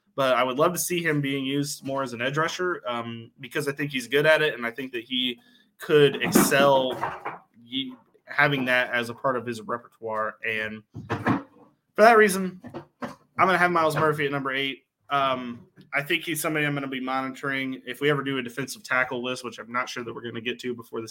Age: 20-39